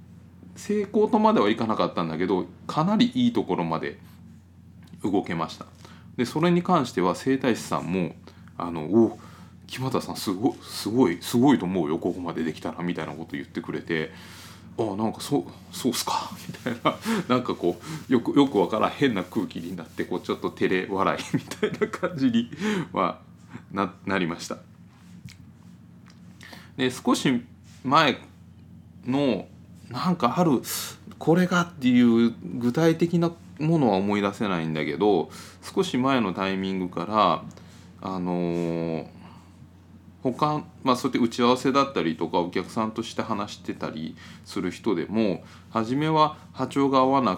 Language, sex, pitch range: Japanese, male, 85-125 Hz